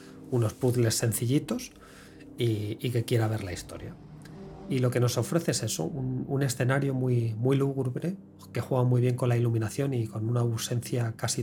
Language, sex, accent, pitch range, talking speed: Spanish, male, Spanish, 110-130 Hz, 185 wpm